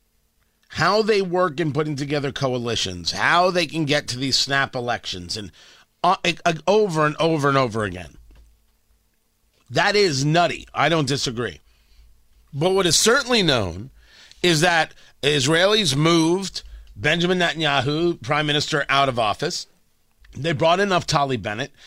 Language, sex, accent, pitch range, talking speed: English, male, American, 110-185 Hz, 140 wpm